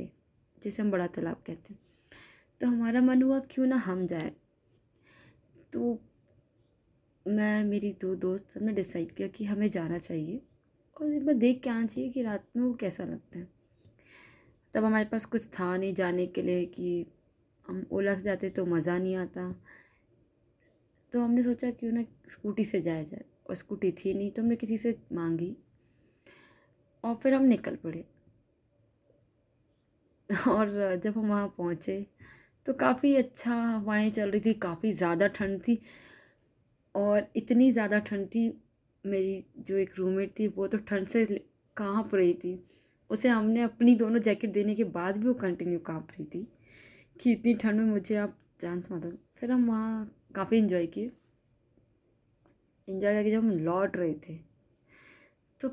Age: 20-39